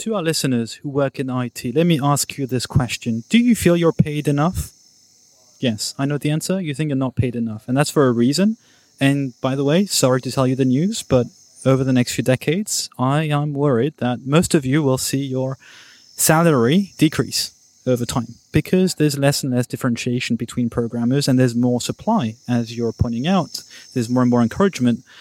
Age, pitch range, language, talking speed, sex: 20-39, 125-155 Hz, English, 205 wpm, male